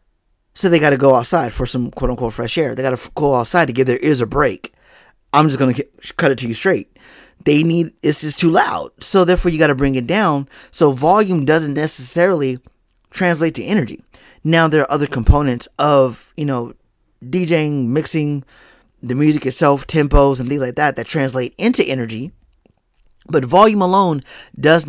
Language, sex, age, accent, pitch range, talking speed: English, male, 30-49, American, 135-170 Hz, 190 wpm